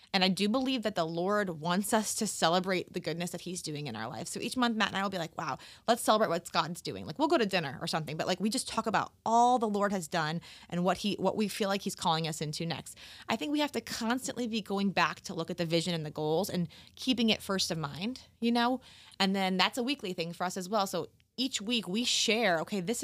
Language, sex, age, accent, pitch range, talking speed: English, female, 20-39, American, 185-240 Hz, 275 wpm